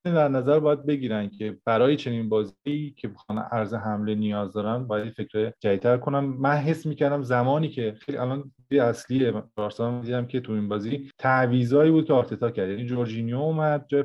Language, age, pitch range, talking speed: Persian, 30-49, 110-140 Hz, 170 wpm